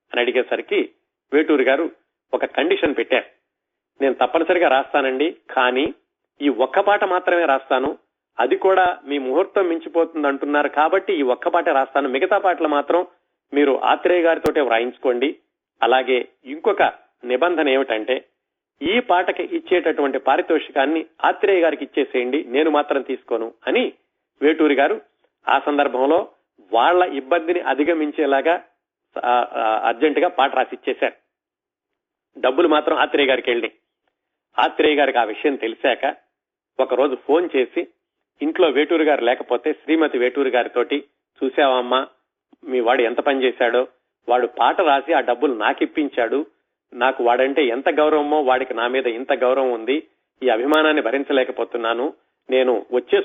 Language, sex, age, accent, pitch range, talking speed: Telugu, male, 40-59, native, 130-175 Hz, 125 wpm